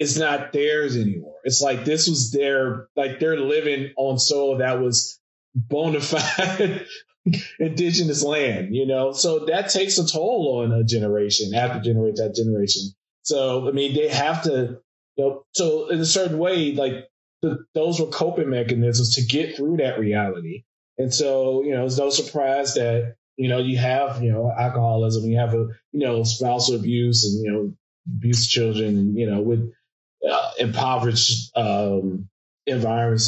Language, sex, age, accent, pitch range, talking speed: English, male, 20-39, American, 115-150 Hz, 170 wpm